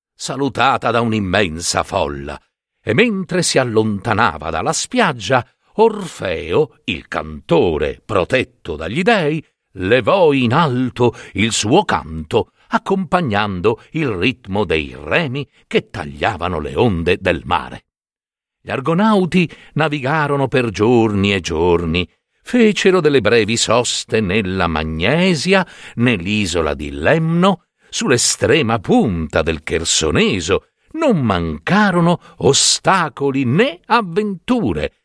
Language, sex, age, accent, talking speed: Italian, male, 60-79, native, 100 wpm